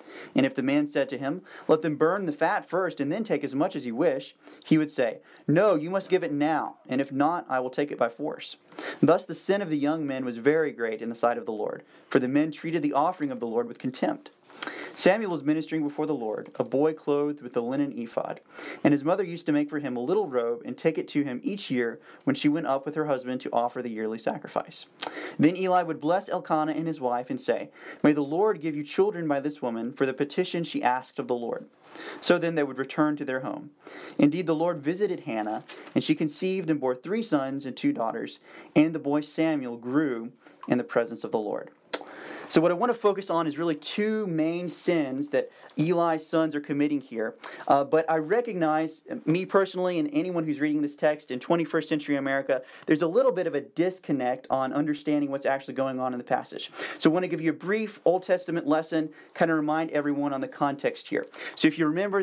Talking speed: 235 wpm